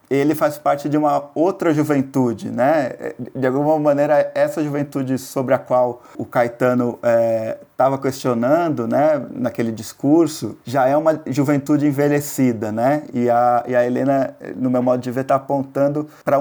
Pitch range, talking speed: 125-150 Hz, 155 wpm